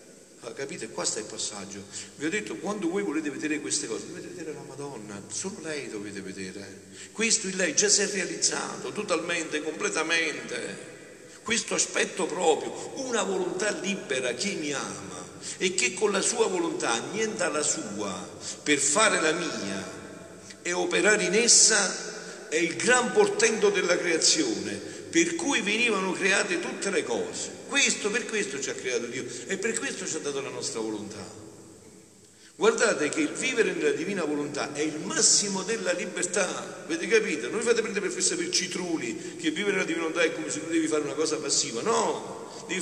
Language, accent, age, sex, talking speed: Italian, native, 50-69, male, 170 wpm